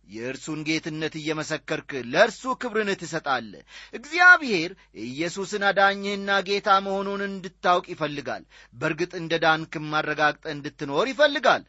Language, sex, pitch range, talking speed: Amharic, male, 160-235 Hz, 90 wpm